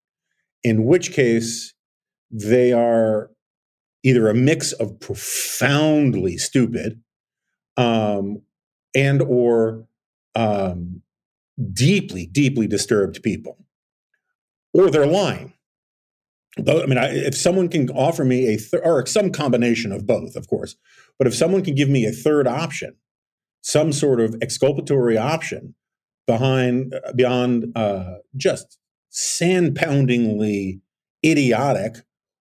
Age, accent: 40-59, American